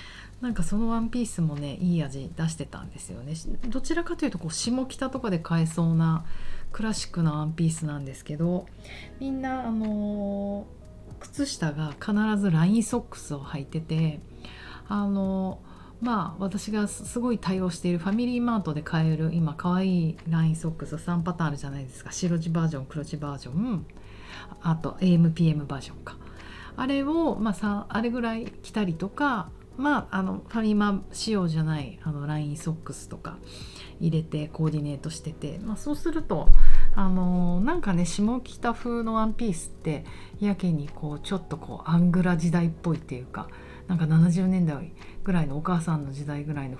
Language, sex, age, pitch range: Japanese, female, 40-59, 155-205 Hz